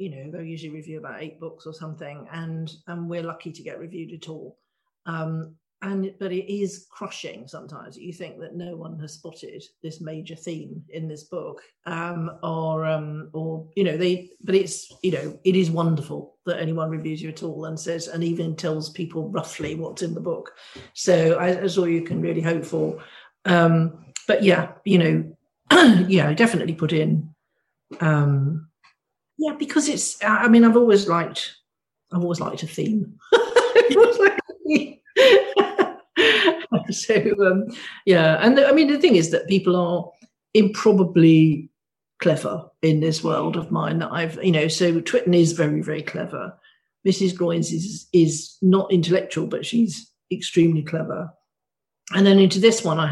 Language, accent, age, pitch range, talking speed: English, British, 50-69, 160-195 Hz, 170 wpm